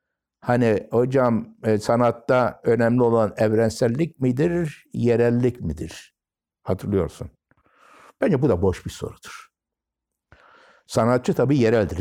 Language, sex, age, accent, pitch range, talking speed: Turkish, male, 60-79, native, 90-125 Hz, 95 wpm